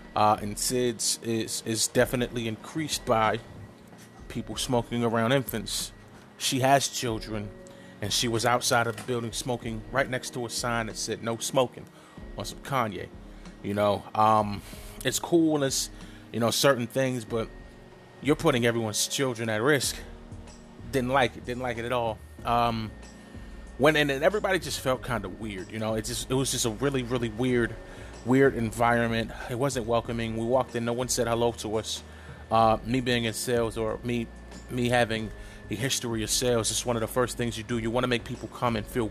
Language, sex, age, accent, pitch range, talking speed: English, male, 30-49, American, 110-125 Hz, 190 wpm